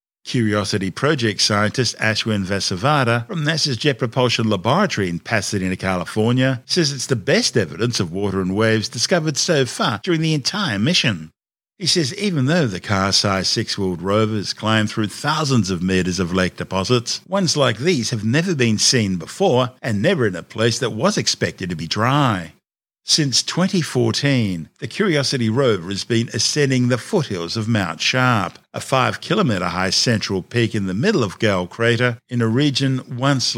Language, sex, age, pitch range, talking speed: English, male, 50-69, 100-130 Hz, 165 wpm